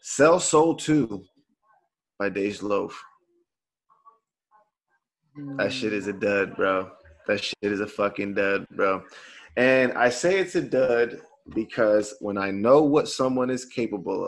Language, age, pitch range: English, 20-39, 110-145 Hz